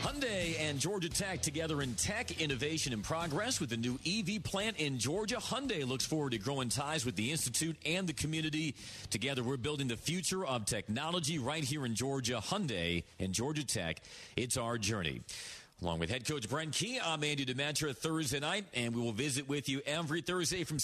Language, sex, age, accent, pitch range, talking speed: English, male, 40-59, American, 115-150 Hz, 195 wpm